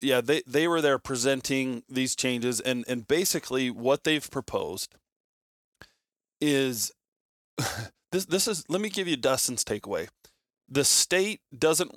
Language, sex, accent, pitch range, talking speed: English, male, American, 115-135 Hz, 135 wpm